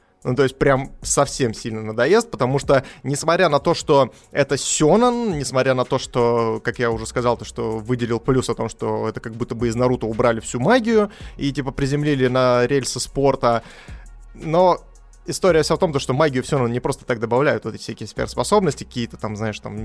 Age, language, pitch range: 20-39, Russian, 115-140 Hz